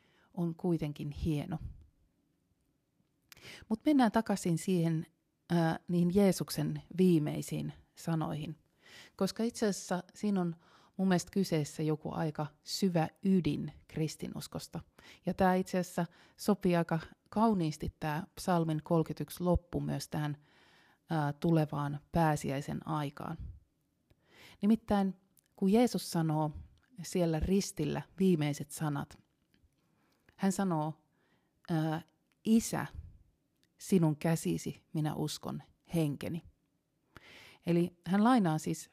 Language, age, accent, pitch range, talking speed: Finnish, 30-49, native, 150-185 Hz, 95 wpm